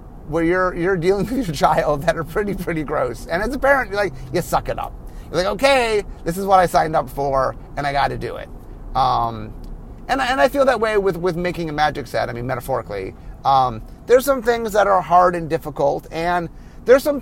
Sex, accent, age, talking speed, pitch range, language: male, American, 30-49, 230 wpm, 135-195 Hz, English